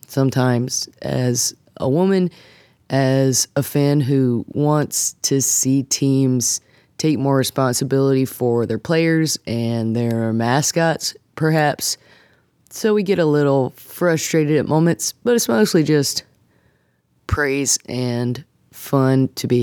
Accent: American